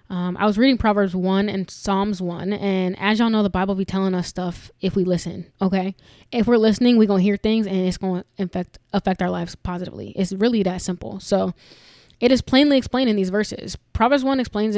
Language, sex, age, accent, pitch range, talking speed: English, female, 10-29, American, 180-215 Hz, 225 wpm